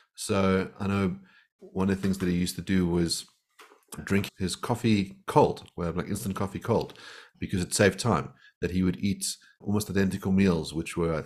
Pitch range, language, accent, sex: 90-105 Hz, English, Australian, male